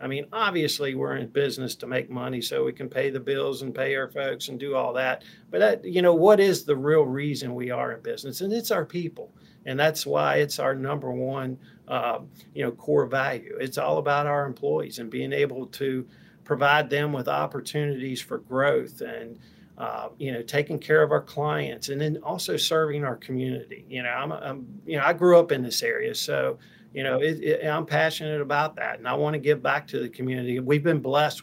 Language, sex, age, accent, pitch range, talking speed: English, male, 50-69, American, 135-155 Hz, 220 wpm